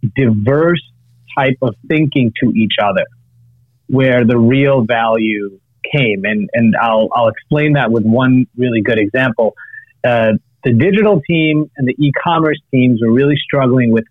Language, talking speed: English, 150 wpm